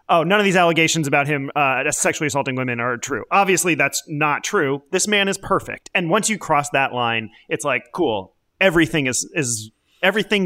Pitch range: 130-165 Hz